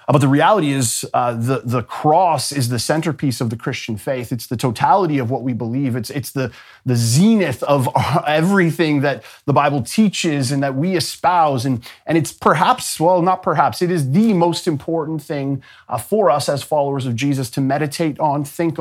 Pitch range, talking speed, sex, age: 130-165 Hz, 195 wpm, male, 30-49